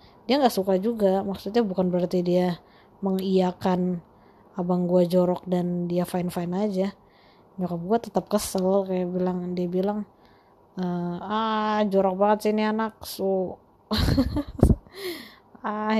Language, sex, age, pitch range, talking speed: Indonesian, female, 20-39, 190-220 Hz, 130 wpm